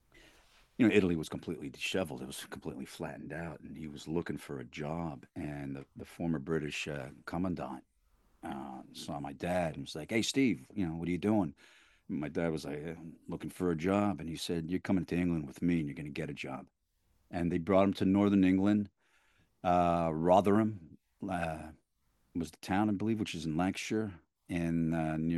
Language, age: English, 50-69